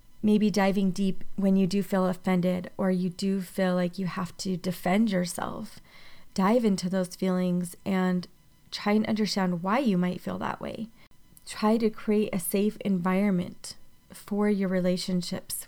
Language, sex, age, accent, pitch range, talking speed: English, female, 30-49, American, 185-200 Hz, 155 wpm